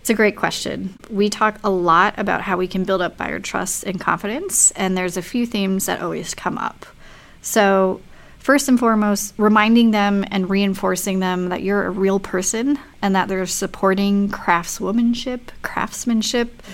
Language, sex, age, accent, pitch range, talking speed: English, female, 30-49, American, 185-230 Hz, 170 wpm